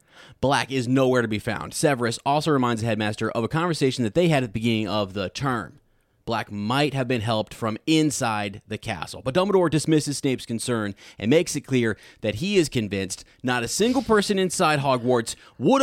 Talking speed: 195 wpm